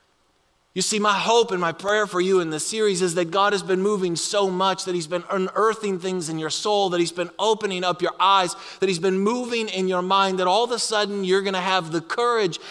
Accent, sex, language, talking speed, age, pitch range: American, male, English, 250 wpm, 30-49, 165-210 Hz